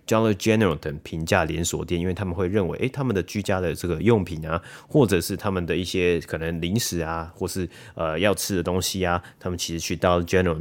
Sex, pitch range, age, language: male, 85-105 Hz, 30-49, Chinese